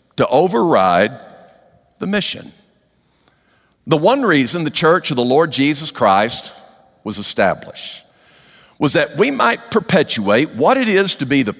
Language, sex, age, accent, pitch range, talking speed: English, male, 50-69, American, 150-235 Hz, 140 wpm